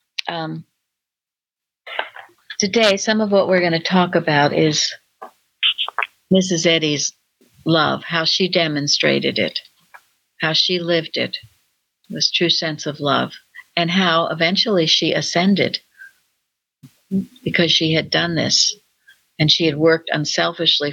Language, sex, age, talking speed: English, female, 60-79, 120 wpm